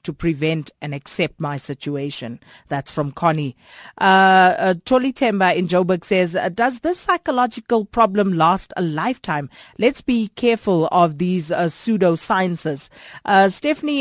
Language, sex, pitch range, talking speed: English, female, 170-230 Hz, 140 wpm